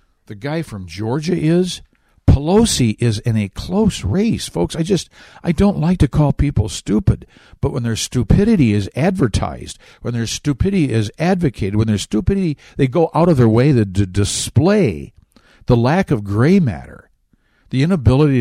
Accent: American